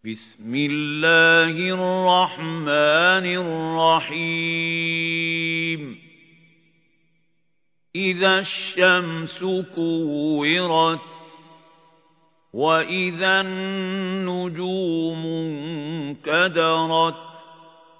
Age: 50-69